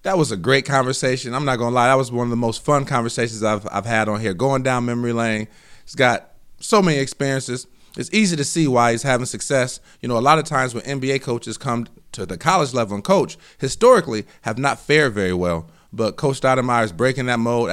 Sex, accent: male, American